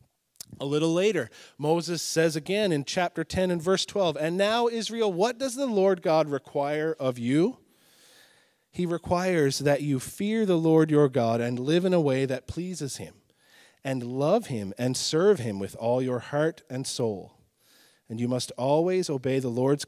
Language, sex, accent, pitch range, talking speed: English, male, American, 125-180 Hz, 180 wpm